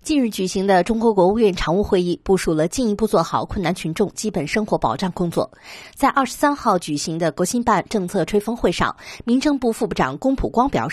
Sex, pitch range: female, 175-230 Hz